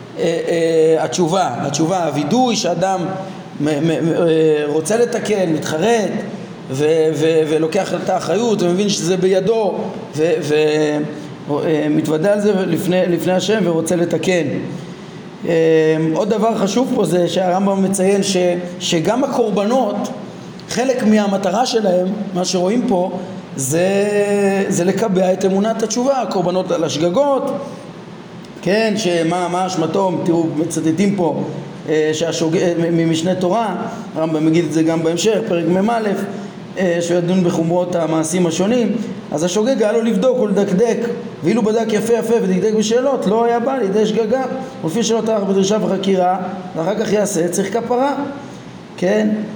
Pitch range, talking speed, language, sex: 170-215 Hz, 115 wpm, Hebrew, male